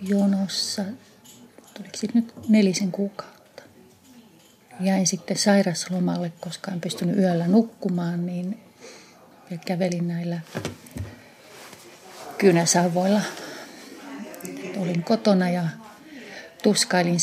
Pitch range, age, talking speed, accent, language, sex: 175-205 Hz, 30-49, 75 wpm, native, Finnish, female